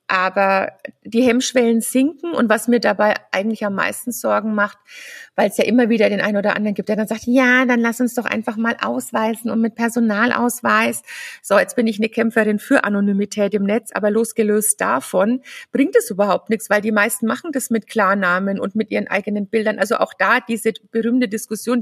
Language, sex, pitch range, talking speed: German, female, 205-235 Hz, 200 wpm